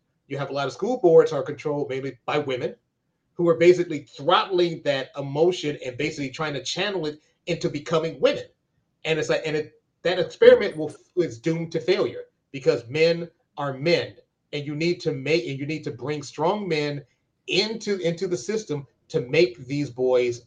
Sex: male